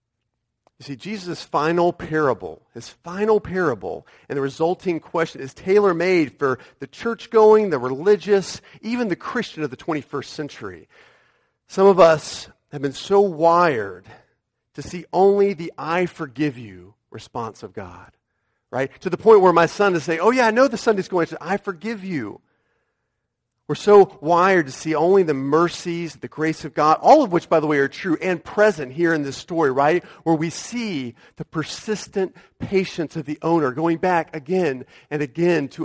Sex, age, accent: male, 40-59, American